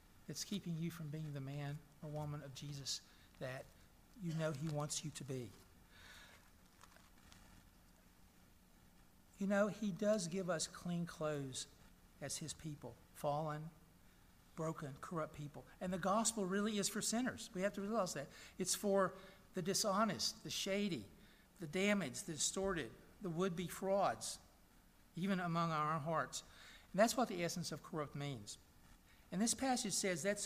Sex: male